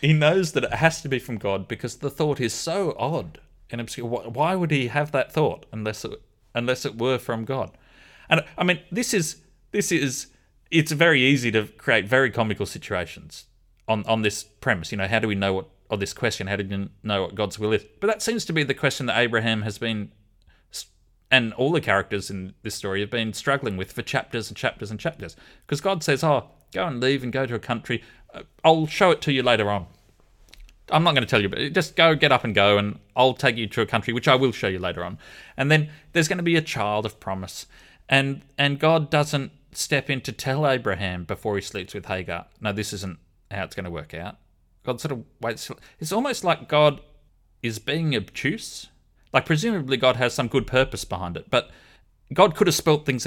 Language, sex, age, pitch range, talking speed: English, male, 30-49, 100-145 Hz, 225 wpm